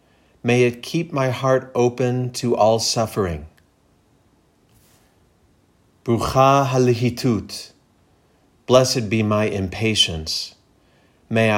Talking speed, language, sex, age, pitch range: 85 wpm, English, male, 40-59, 95-120 Hz